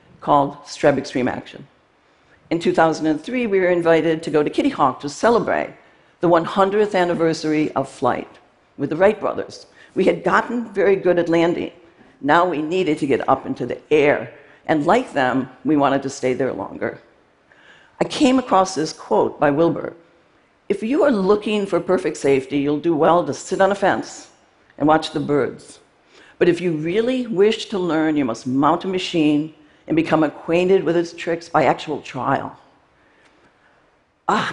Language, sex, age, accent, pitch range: Chinese, female, 60-79, American, 150-185 Hz